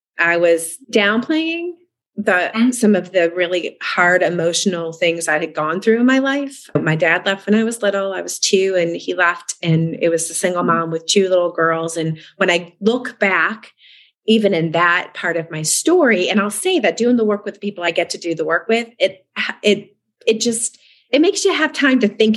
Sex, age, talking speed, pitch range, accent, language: female, 30-49, 210 wpm, 170-230 Hz, American, English